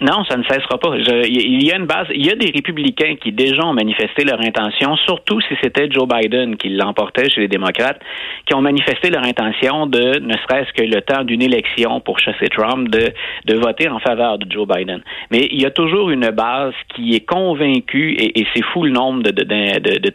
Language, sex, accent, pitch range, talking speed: French, male, Canadian, 110-155 Hz, 225 wpm